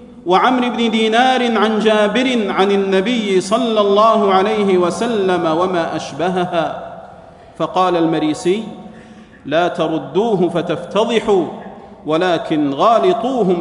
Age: 40-59